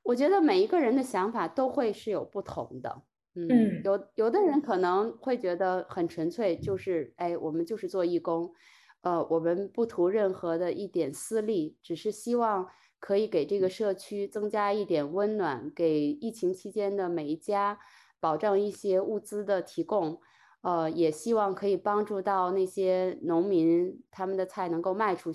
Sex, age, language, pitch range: female, 20-39, Chinese, 180-235 Hz